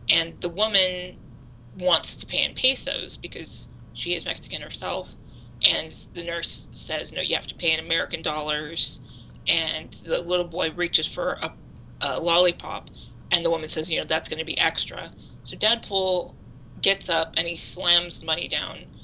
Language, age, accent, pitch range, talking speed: English, 20-39, American, 150-180 Hz, 170 wpm